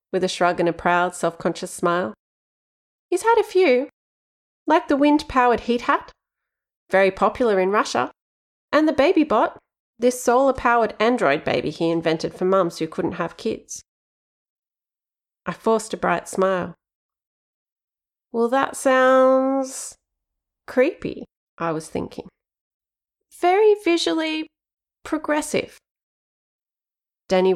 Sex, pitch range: female, 185-275 Hz